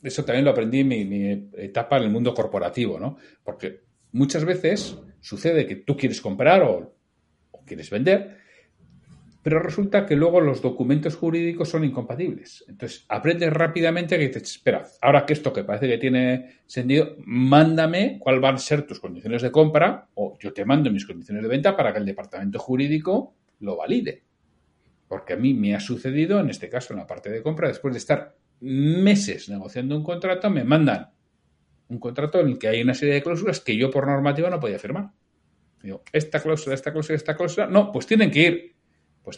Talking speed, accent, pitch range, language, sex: 190 wpm, Spanish, 130-185 Hz, Spanish, male